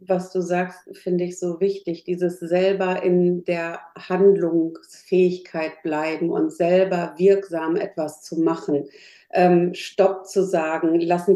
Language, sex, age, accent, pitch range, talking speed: German, female, 50-69, German, 175-195 Hz, 125 wpm